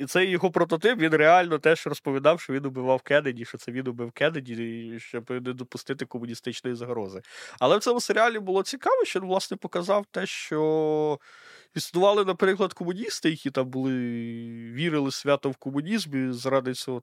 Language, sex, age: Ukrainian, male, 20-39